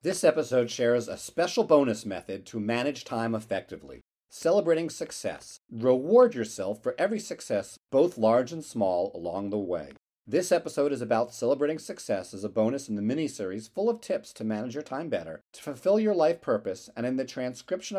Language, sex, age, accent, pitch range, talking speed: English, male, 40-59, American, 110-170 Hz, 180 wpm